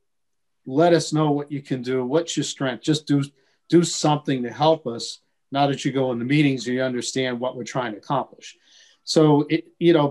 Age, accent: 50-69, American